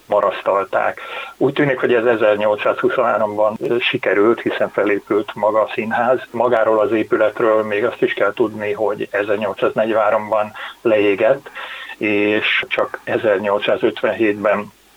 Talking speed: 100 wpm